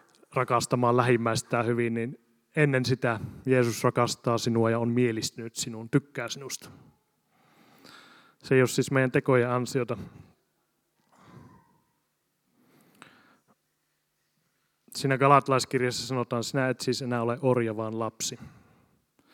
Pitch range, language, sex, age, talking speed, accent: 120-135 Hz, Finnish, male, 30-49, 105 wpm, native